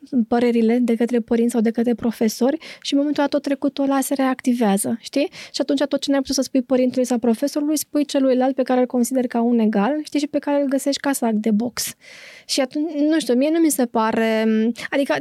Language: Romanian